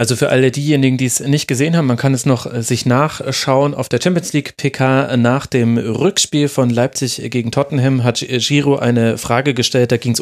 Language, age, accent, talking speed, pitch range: German, 30-49, German, 205 wpm, 120-140 Hz